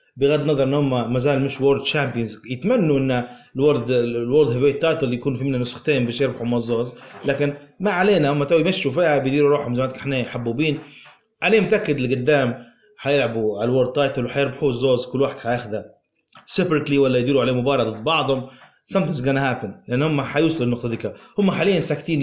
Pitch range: 125-165 Hz